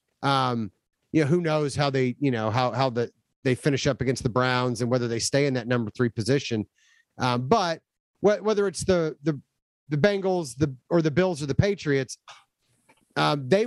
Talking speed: 200 wpm